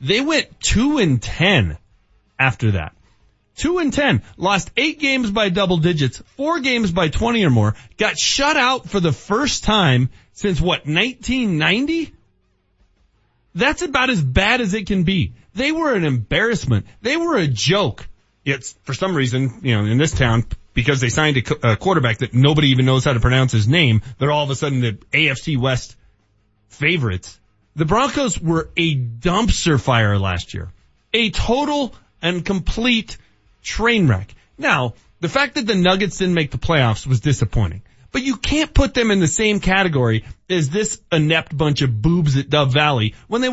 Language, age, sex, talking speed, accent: English, 30-49, male, 175 wpm, American